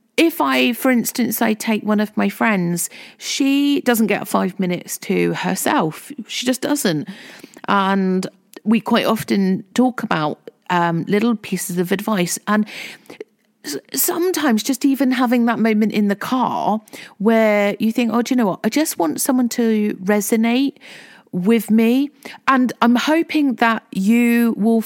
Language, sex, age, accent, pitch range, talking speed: English, female, 40-59, British, 200-255 Hz, 150 wpm